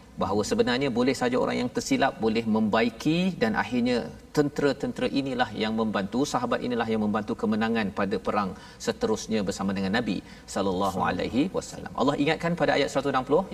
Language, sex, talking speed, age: Malayalam, male, 150 wpm, 50-69